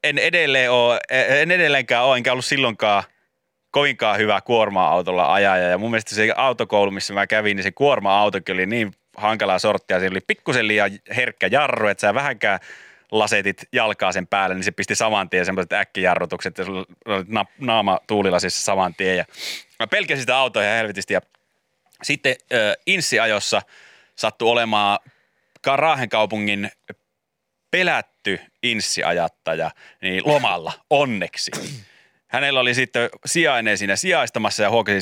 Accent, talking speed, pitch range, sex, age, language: native, 135 wpm, 95-120 Hz, male, 30-49, Finnish